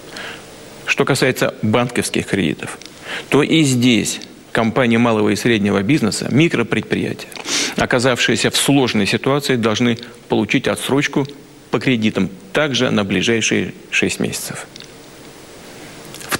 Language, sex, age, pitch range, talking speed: Russian, male, 40-59, 110-130 Hz, 100 wpm